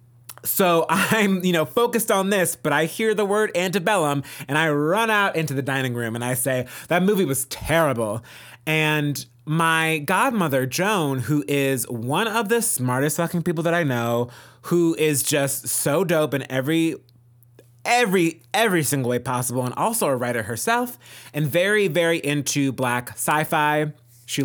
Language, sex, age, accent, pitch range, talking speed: English, male, 30-49, American, 125-170 Hz, 165 wpm